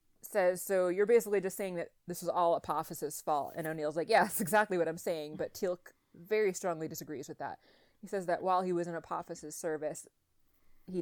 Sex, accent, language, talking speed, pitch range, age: female, American, English, 205 wpm, 160-185 Hz, 20-39